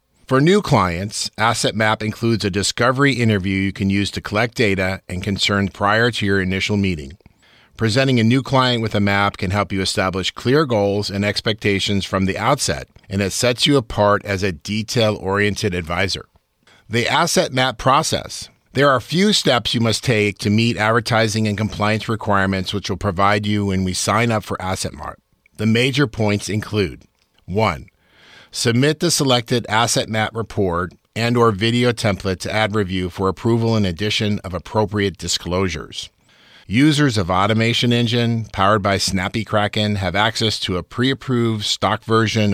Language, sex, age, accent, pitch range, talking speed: English, male, 50-69, American, 95-115 Hz, 165 wpm